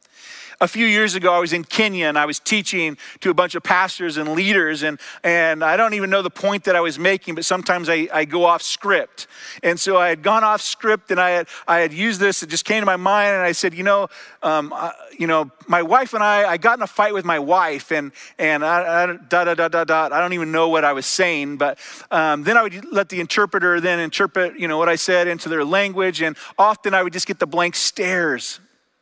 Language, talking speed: English, 255 wpm